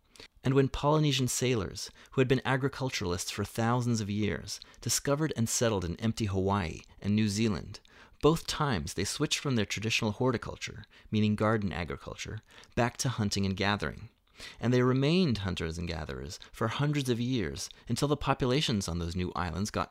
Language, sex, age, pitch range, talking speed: English, male, 30-49, 95-125 Hz, 165 wpm